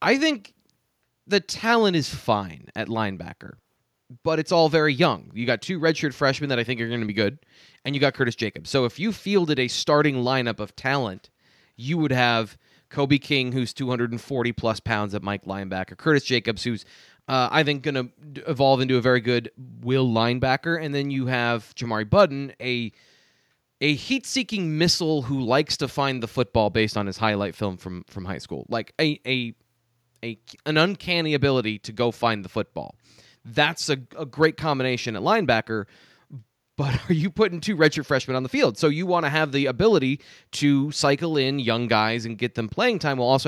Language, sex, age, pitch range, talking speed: English, male, 20-39, 115-150 Hz, 190 wpm